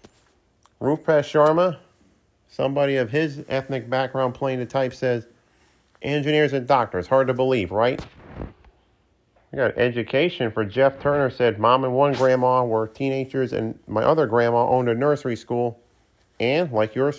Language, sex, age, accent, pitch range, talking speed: English, male, 40-59, American, 120-140 Hz, 145 wpm